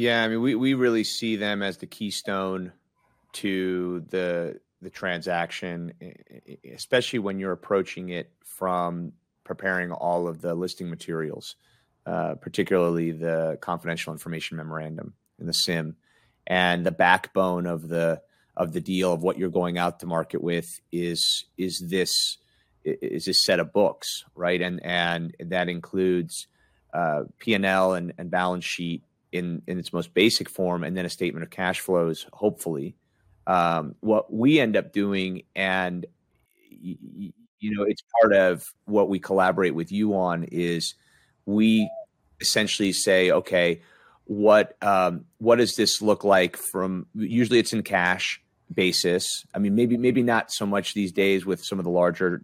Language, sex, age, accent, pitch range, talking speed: English, male, 30-49, American, 85-100 Hz, 160 wpm